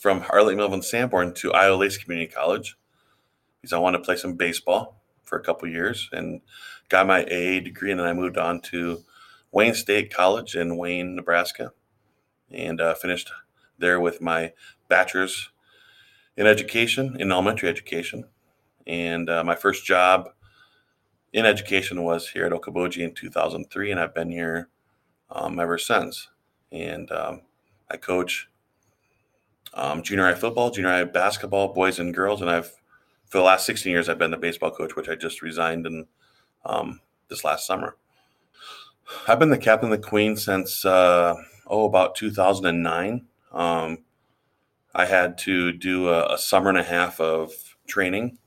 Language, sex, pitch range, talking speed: English, male, 85-105 Hz, 160 wpm